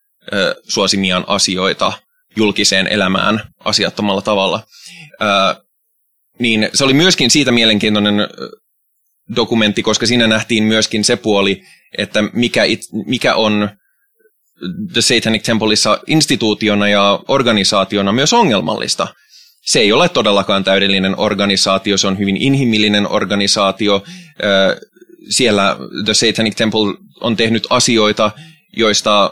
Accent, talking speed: native, 100 wpm